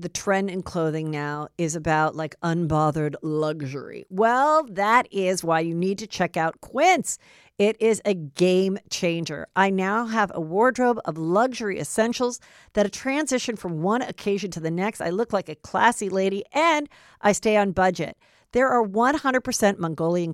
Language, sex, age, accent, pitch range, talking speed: English, female, 50-69, American, 165-235 Hz, 170 wpm